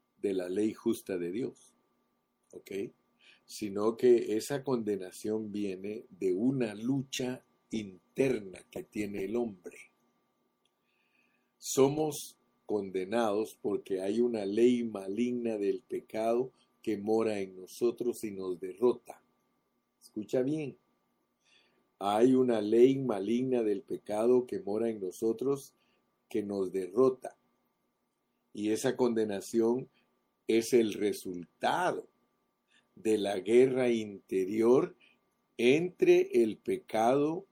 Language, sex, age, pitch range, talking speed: Spanish, male, 50-69, 105-135 Hz, 100 wpm